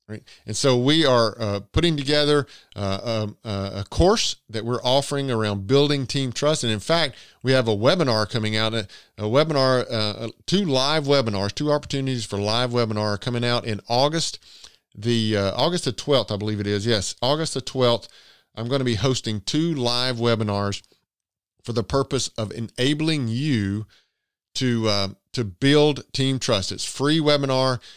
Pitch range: 105-135 Hz